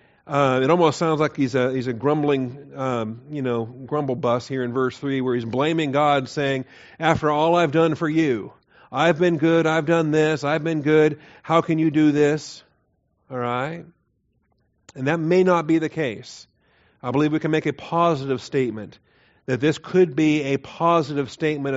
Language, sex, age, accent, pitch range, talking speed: English, male, 50-69, American, 125-155 Hz, 185 wpm